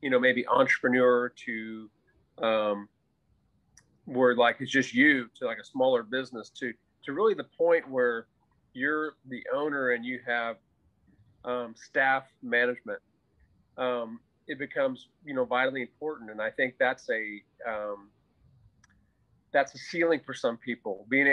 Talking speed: 145 wpm